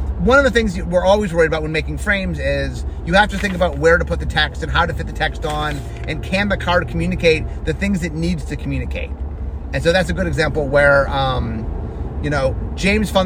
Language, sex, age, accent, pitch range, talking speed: English, male, 30-49, American, 140-215 Hz, 235 wpm